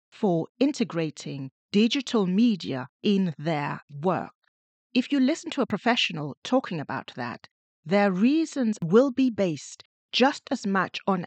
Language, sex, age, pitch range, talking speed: English, female, 40-59, 165-235 Hz, 135 wpm